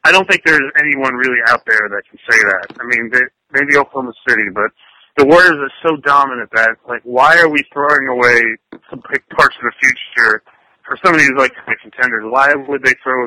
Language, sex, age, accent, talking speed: English, male, 30-49, American, 215 wpm